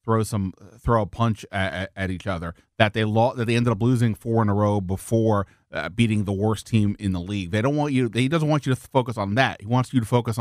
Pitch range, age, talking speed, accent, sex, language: 105-140 Hz, 30-49, 275 wpm, American, male, English